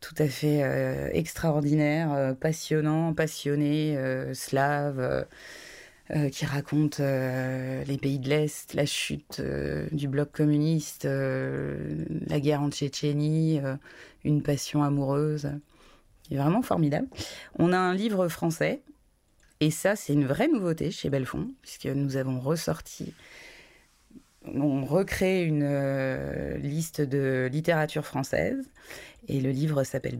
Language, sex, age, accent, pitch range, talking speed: French, female, 20-39, French, 135-160 Hz, 130 wpm